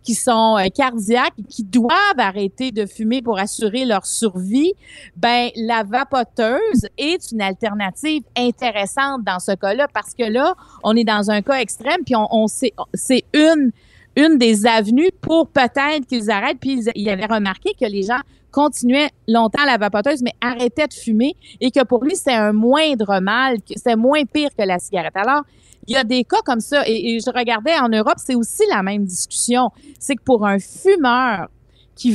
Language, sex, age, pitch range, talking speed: French, female, 40-59, 210-275 Hz, 185 wpm